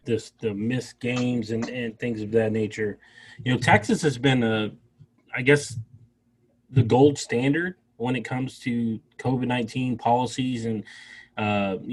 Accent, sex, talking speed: American, male, 145 wpm